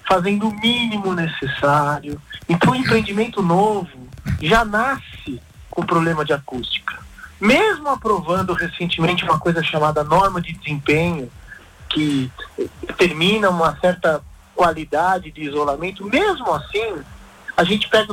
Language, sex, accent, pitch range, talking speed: Portuguese, male, Brazilian, 165-220 Hz, 115 wpm